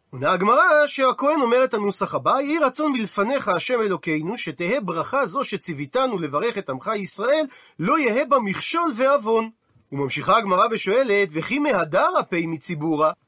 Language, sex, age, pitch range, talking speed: Hebrew, male, 40-59, 185-265 Hz, 145 wpm